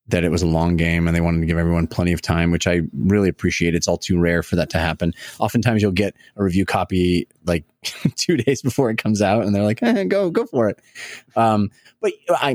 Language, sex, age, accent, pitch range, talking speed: English, male, 30-49, American, 90-120 Hz, 240 wpm